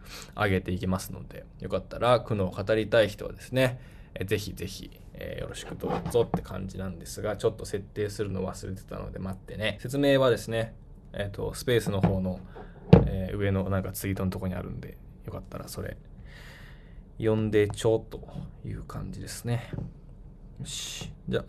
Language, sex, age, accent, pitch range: Japanese, male, 20-39, native, 95-110 Hz